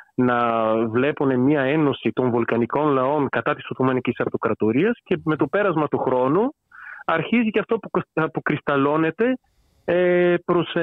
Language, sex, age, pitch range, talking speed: Greek, male, 40-59, 135-180 Hz, 125 wpm